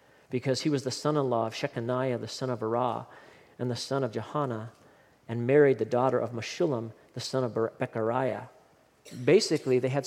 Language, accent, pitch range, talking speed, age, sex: English, American, 130-165 Hz, 185 wpm, 40-59, male